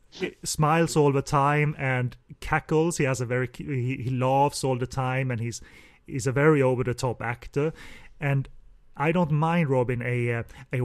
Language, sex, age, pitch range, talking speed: English, male, 30-49, 120-140 Hz, 170 wpm